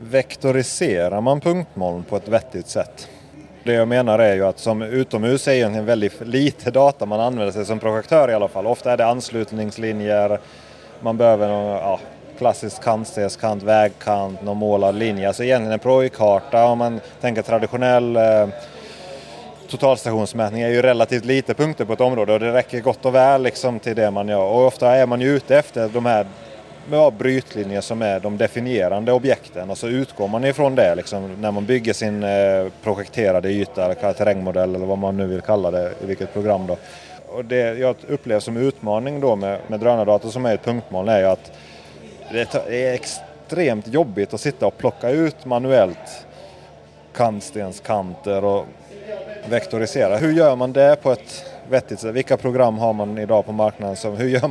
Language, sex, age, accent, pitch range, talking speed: Swedish, male, 30-49, native, 105-125 Hz, 175 wpm